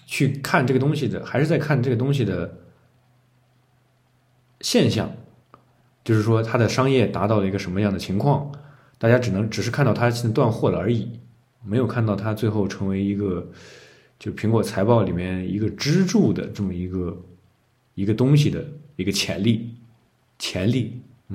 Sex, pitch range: male, 100-130 Hz